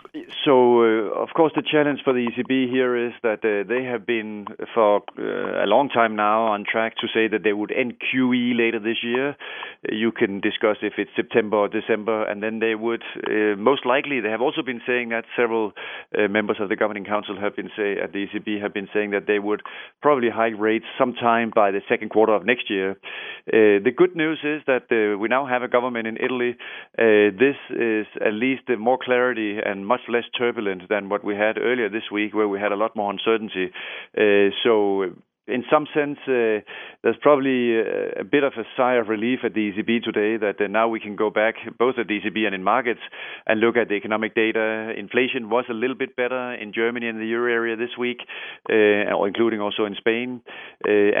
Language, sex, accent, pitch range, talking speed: English, male, Danish, 105-125 Hz, 215 wpm